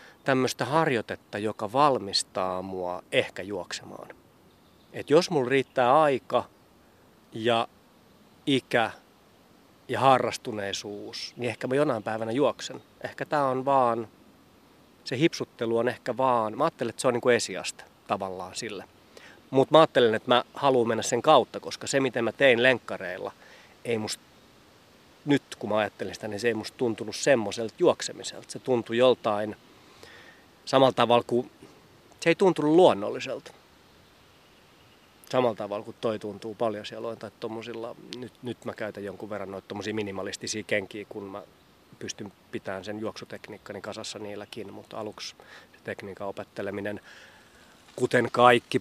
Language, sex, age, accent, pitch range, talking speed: Finnish, male, 30-49, native, 105-125 Hz, 140 wpm